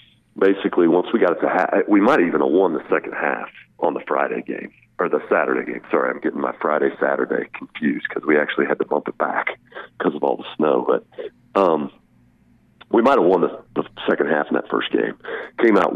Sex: male